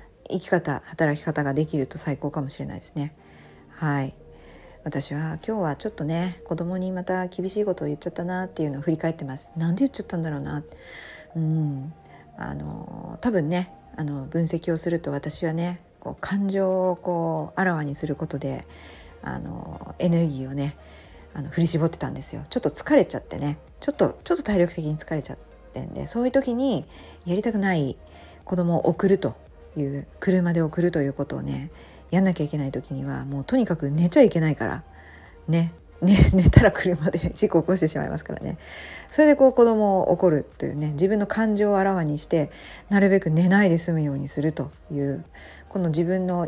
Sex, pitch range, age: female, 140-185 Hz, 40-59